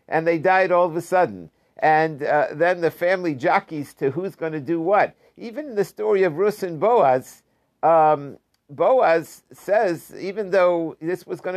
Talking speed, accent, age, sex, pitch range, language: 180 wpm, American, 50-69, male, 135-175 Hz, English